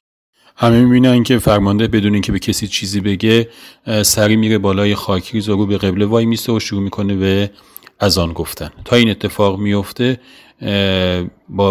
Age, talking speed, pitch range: 30-49, 170 wpm, 95-105 Hz